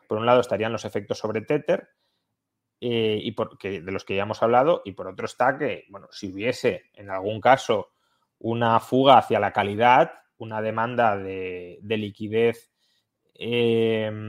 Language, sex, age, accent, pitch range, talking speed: Spanish, male, 20-39, Spanish, 100-120 Hz, 165 wpm